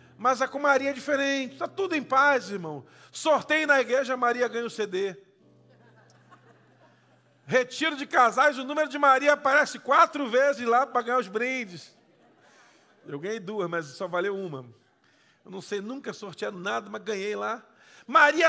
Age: 40-59